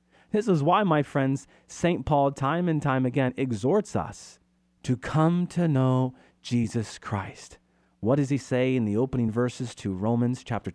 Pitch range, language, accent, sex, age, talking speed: 100-140 Hz, English, American, male, 40-59, 165 wpm